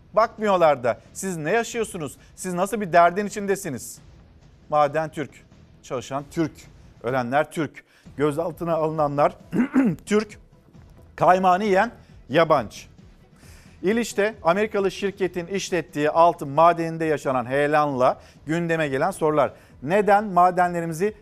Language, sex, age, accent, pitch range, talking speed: Turkish, male, 50-69, native, 150-205 Hz, 100 wpm